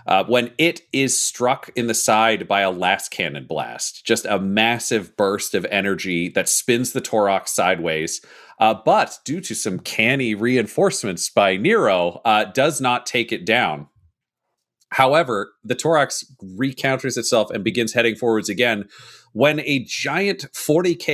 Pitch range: 100-130 Hz